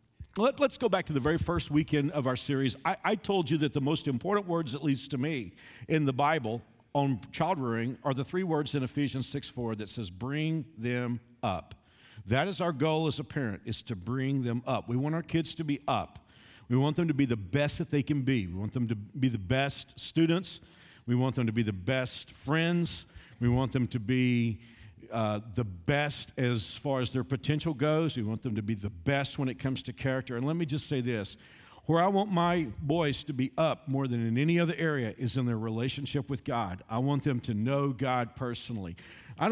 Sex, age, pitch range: male, 50-69, 120-155 Hz